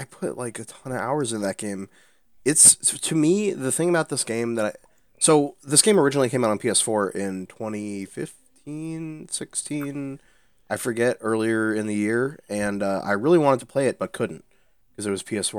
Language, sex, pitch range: English, male, 105-140 Hz